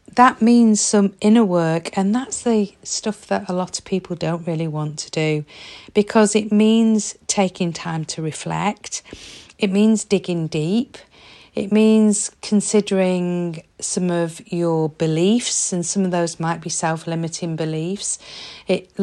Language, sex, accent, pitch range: English, female, British, 175-220 Hz